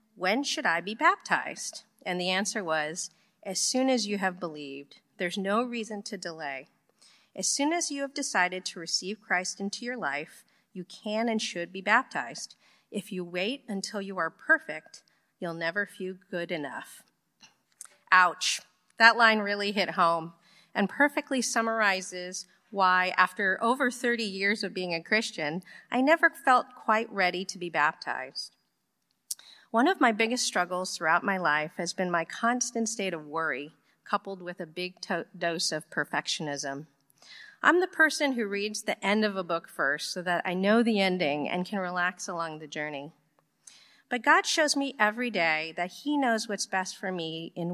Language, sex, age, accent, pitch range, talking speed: English, female, 40-59, American, 170-220 Hz, 170 wpm